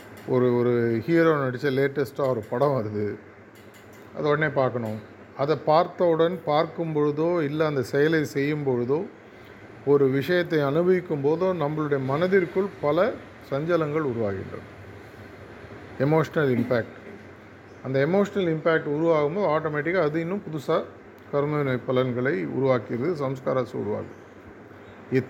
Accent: native